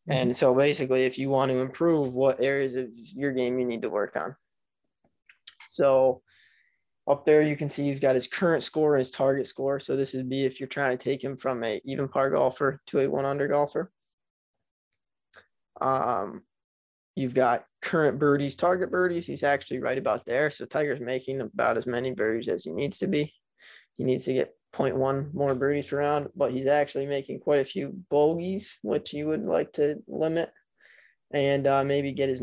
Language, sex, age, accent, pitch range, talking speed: English, male, 20-39, American, 130-150 Hz, 190 wpm